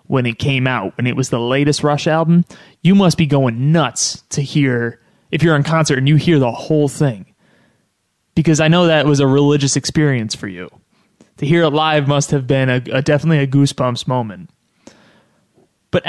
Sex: male